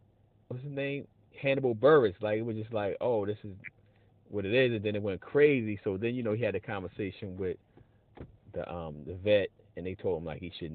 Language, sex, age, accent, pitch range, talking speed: English, male, 30-49, American, 100-130 Hz, 230 wpm